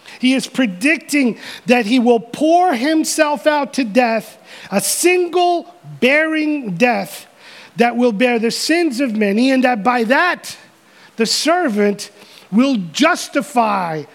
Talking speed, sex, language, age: 125 wpm, male, English, 40-59